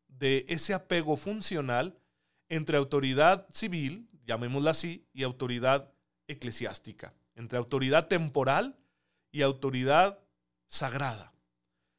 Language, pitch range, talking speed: Spanish, 120-155 Hz, 90 wpm